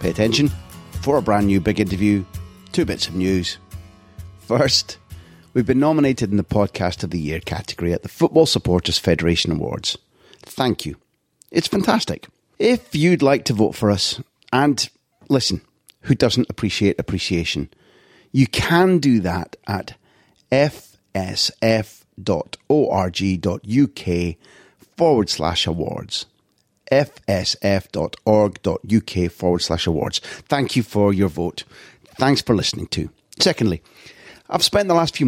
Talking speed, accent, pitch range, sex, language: 125 wpm, British, 95-130 Hz, male, English